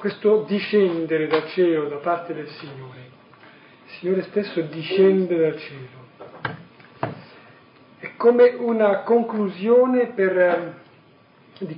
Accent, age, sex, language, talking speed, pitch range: native, 40-59, male, Italian, 100 wpm, 155-200 Hz